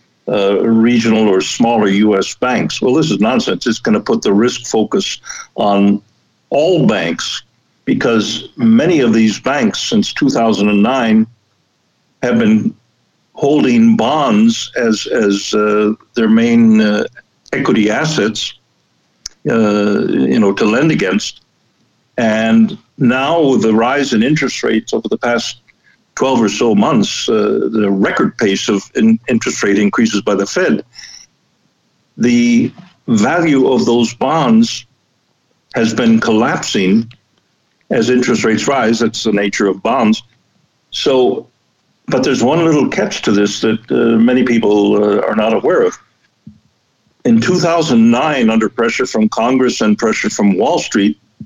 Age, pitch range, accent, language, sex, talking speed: 60-79, 105-170 Hz, American, English, male, 135 wpm